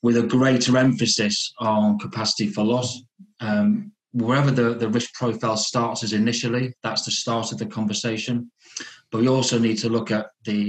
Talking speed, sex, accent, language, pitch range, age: 175 wpm, male, British, English, 105-120 Hz, 30-49